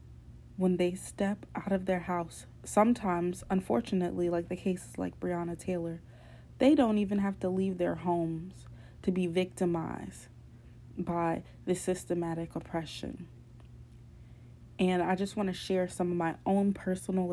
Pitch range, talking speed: 165-190 Hz, 140 wpm